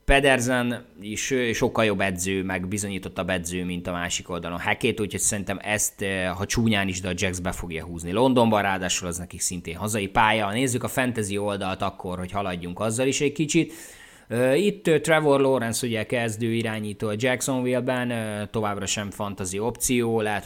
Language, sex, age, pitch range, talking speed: Hungarian, male, 20-39, 95-120 Hz, 165 wpm